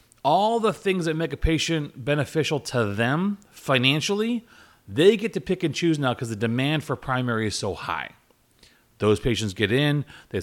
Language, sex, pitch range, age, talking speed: English, male, 105-150 Hz, 30-49, 180 wpm